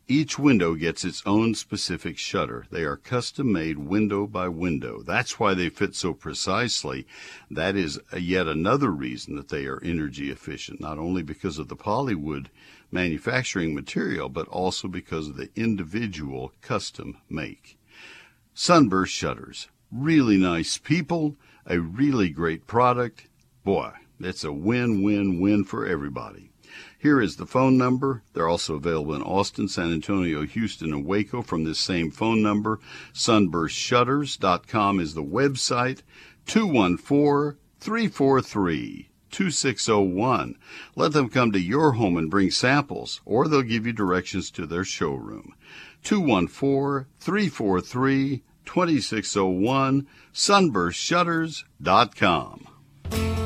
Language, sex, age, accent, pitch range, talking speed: English, male, 60-79, American, 85-130 Hz, 120 wpm